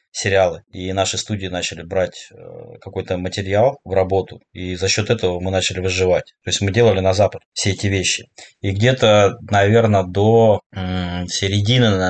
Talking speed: 155 wpm